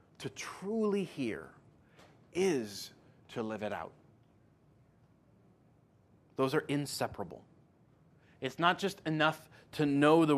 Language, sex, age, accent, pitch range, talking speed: English, male, 30-49, American, 140-185 Hz, 105 wpm